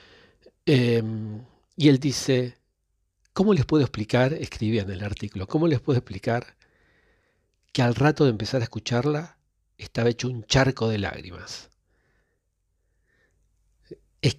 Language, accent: Spanish, Argentinian